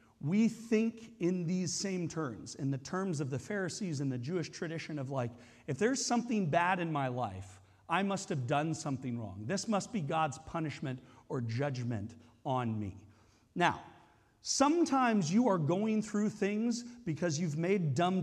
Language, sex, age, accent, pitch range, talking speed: English, male, 40-59, American, 145-225 Hz, 170 wpm